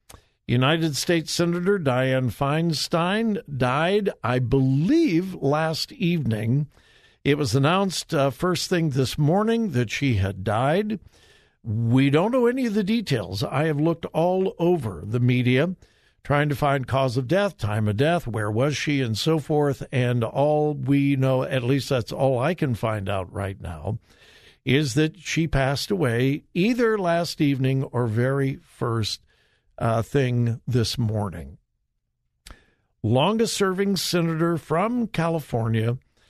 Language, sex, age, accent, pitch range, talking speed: English, male, 60-79, American, 120-165 Hz, 140 wpm